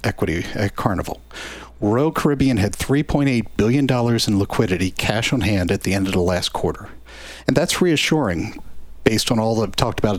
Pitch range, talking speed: 100-135 Hz, 175 wpm